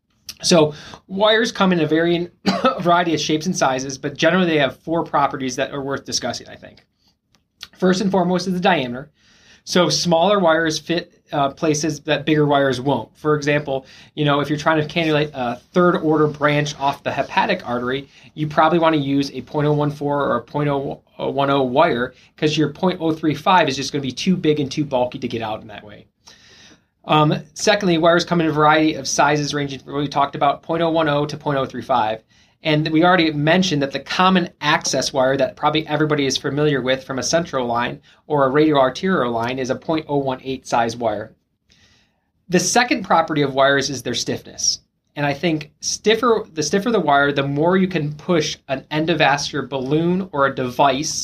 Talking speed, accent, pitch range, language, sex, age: 185 wpm, American, 135-165 Hz, English, male, 20-39